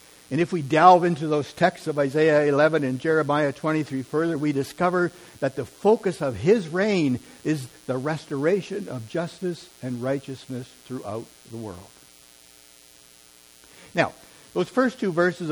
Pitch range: 120-155 Hz